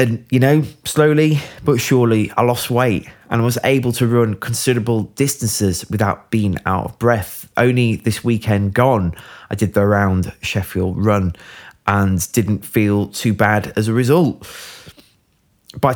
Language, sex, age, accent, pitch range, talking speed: English, male, 20-39, British, 100-125 Hz, 150 wpm